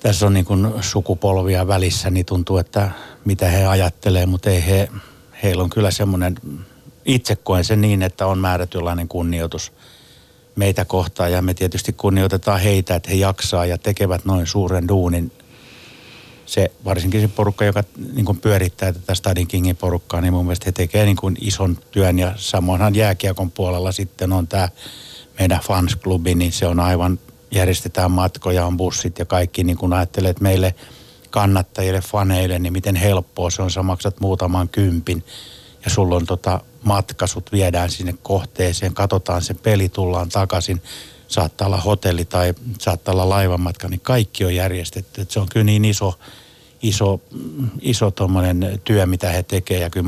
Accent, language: native, Finnish